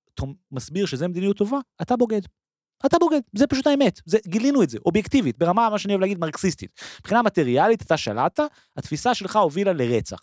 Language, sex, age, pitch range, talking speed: Hebrew, male, 30-49, 135-220 Hz, 180 wpm